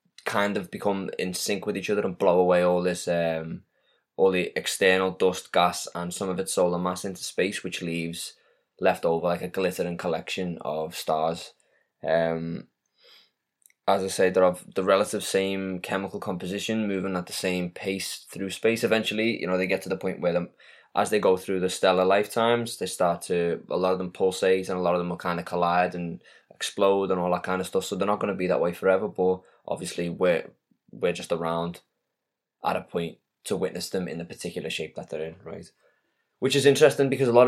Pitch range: 90-100 Hz